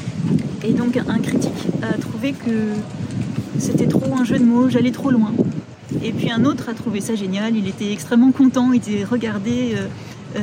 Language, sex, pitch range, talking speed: French, female, 205-240 Hz, 190 wpm